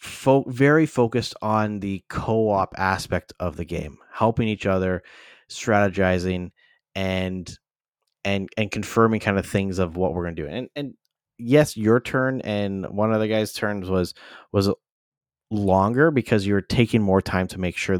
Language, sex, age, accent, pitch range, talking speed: English, male, 20-39, American, 95-125 Hz, 160 wpm